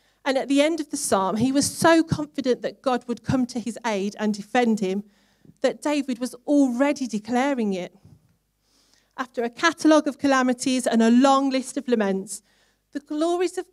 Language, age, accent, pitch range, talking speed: English, 40-59, British, 200-275 Hz, 180 wpm